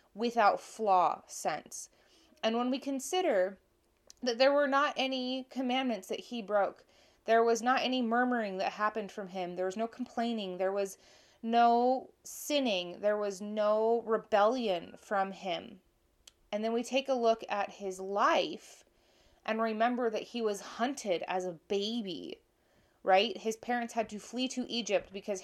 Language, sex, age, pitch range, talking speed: English, female, 20-39, 190-235 Hz, 155 wpm